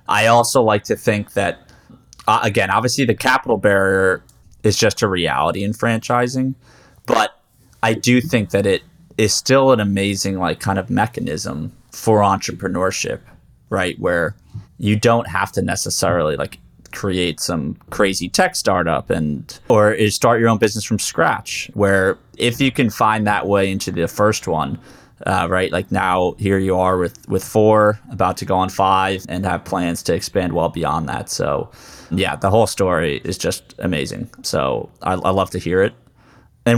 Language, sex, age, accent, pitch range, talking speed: English, male, 20-39, American, 95-115 Hz, 170 wpm